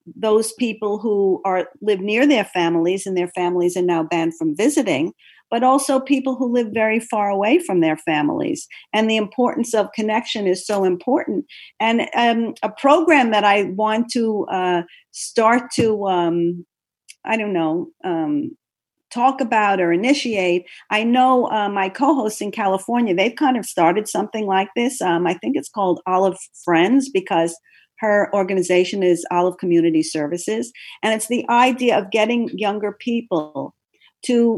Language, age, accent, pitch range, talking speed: English, 50-69, American, 180-240 Hz, 160 wpm